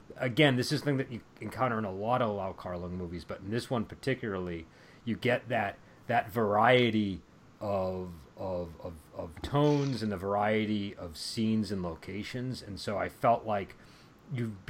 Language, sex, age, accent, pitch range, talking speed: English, male, 30-49, American, 95-120 Hz, 170 wpm